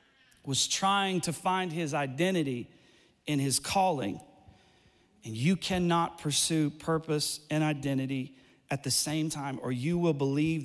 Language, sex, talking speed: English, male, 135 wpm